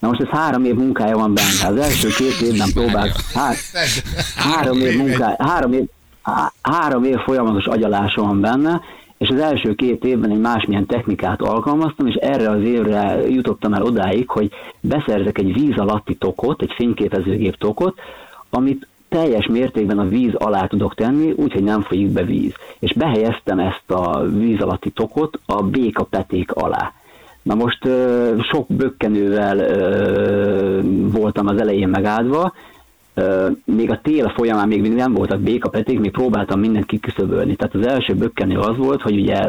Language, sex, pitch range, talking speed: Hungarian, male, 100-130 Hz, 160 wpm